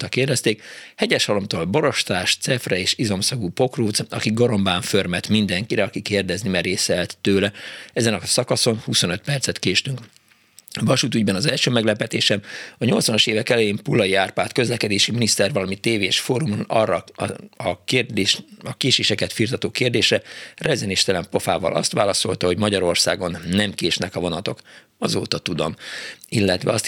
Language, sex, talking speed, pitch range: Hungarian, male, 130 wpm, 95-120 Hz